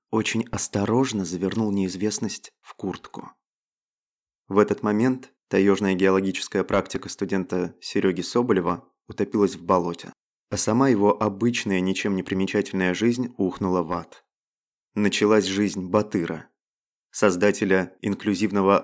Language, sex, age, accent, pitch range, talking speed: Russian, male, 20-39, native, 95-115 Hz, 110 wpm